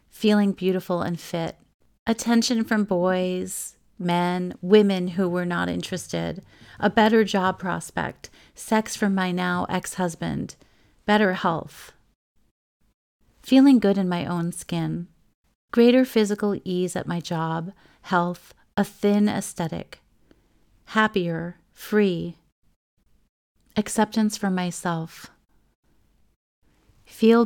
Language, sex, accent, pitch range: English, female, American, 175-205 Hz